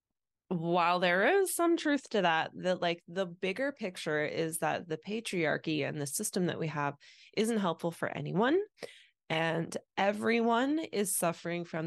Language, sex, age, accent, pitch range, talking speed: English, female, 20-39, American, 155-205 Hz, 155 wpm